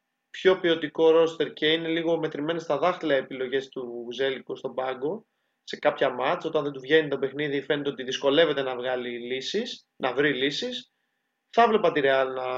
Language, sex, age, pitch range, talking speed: Greek, male, 20-39, 135-195 Hz, 165 wpm